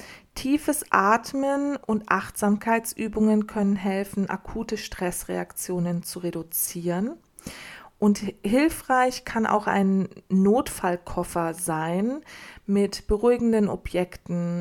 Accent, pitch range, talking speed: German, 180-220 Hz, 80 wpm